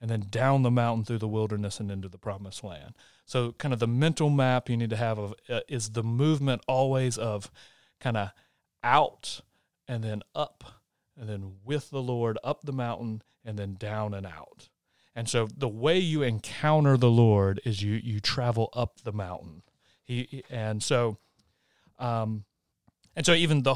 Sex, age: male, 30-49